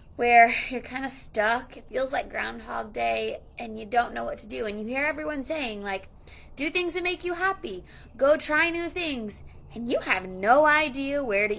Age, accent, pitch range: 20-39, American, 205-285 Hz